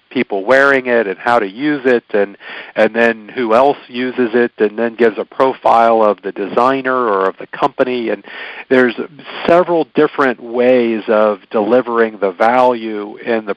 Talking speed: 170 wpm